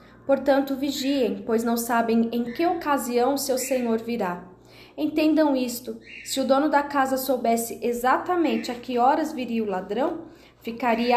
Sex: female